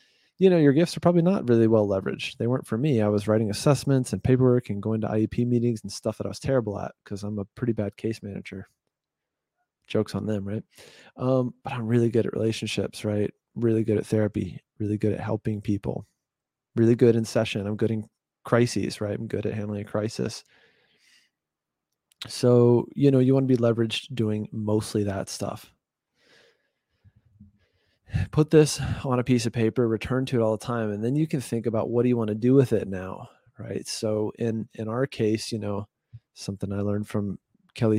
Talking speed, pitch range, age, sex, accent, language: 200 wpm, 105-120 Hz, 30-49, male, American, English